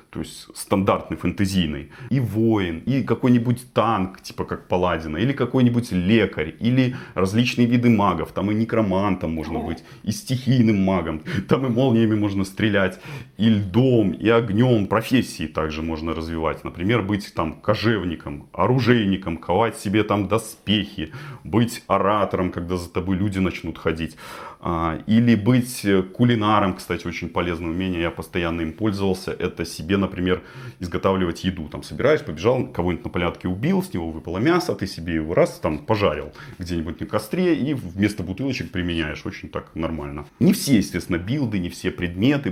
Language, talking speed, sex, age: Russian, 150 wpm, male, 30-49